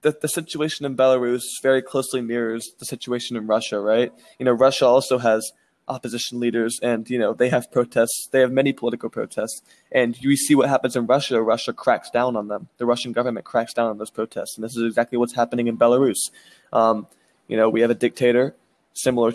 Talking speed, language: 210 wpm, English